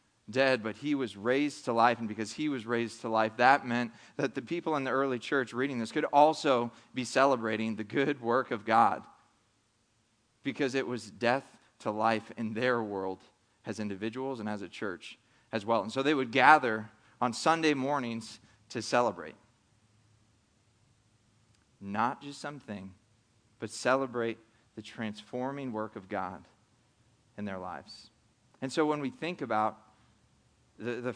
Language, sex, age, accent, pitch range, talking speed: English, male, 30-49, American, 110-145 Hz, 155 wpm